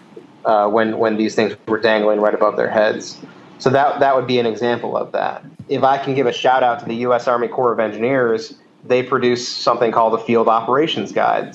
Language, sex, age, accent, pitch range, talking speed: English, male, 30-49, American, 115-125 Hz, 220 wpm